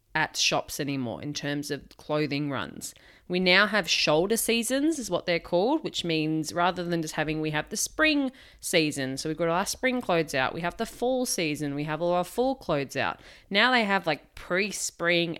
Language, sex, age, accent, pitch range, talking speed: English, female, 20-39, Australian, 150-195 Hz, 205 wpm